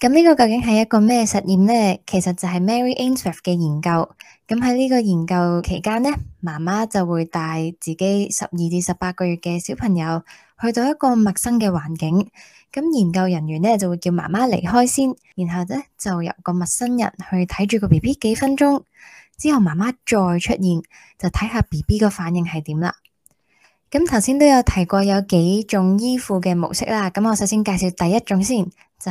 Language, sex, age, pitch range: Chinese, female, 10-29, 175-230 Hz